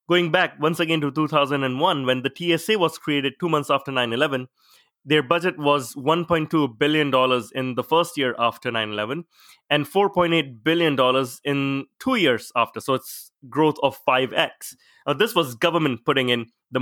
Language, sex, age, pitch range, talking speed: English, male, 20-39, 130-170 Hz, 165 wpm